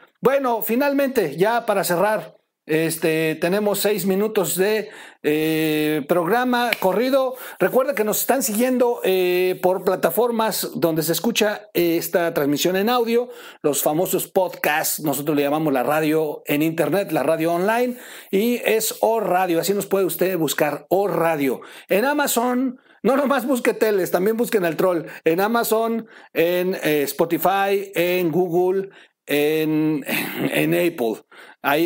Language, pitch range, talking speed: Spanish, 160-225 Hz, 140 wpm